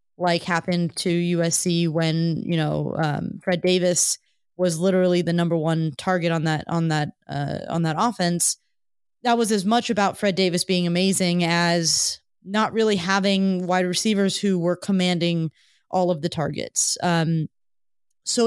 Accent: American